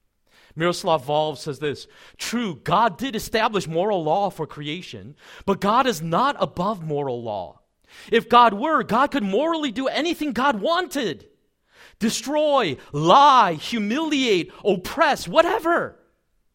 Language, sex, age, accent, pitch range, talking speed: English, male, 40-59, American, 150-240 Hz, 125 wpm